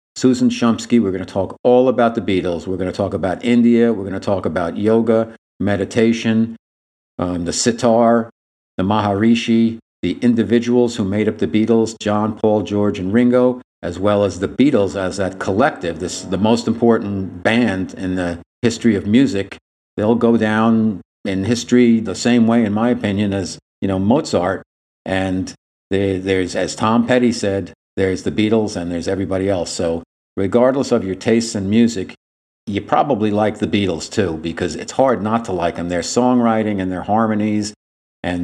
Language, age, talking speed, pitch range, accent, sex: English, 50-69, 180 wpm, 90-115 Hz, American, male